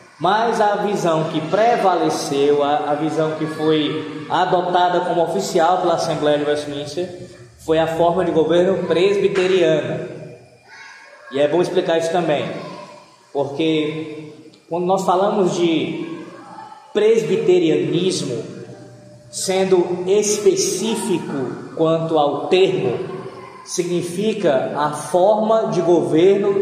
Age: 20-39